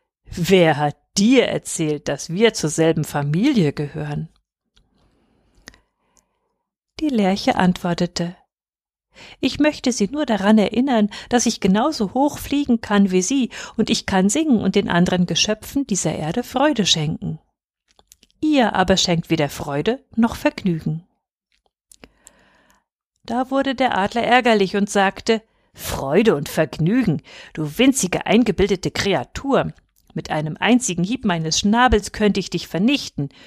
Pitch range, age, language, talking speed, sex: 170-245 Hz, 50-69, German, 125 wpm, female